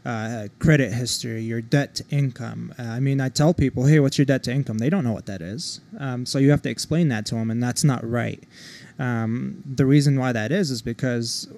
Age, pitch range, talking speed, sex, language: 20-39, 115-140 Hz, 240 wpm, male, English